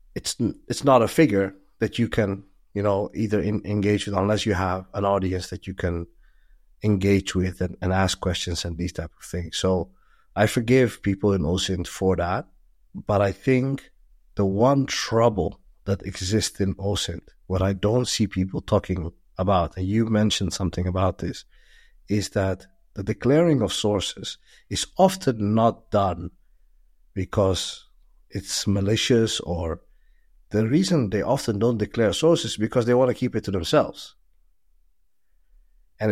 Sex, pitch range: male, 95-110 Hz